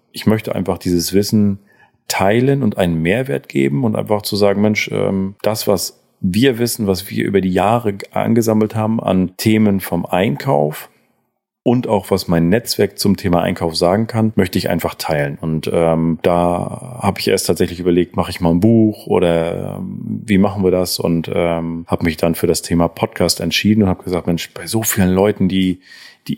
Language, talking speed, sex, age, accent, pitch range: German, 190 wpm, male, 40-59, German, 85-105 Hz